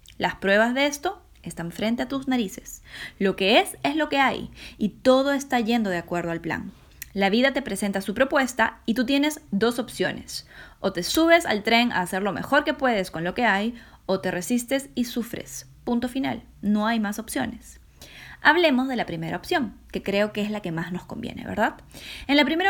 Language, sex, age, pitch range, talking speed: Spanish, female, 10-29, 190-255 Hz, 210 wpm